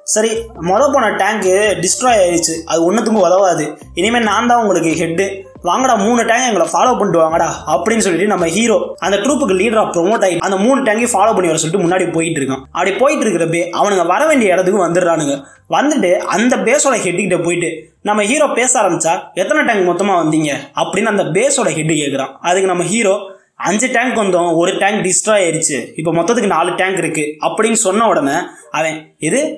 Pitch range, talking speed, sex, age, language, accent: 170-225 Hz, 180 wpm, male, 20-39, Tamil, native